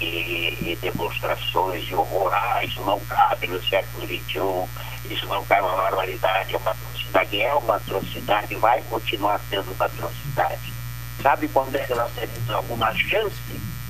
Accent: Brazilian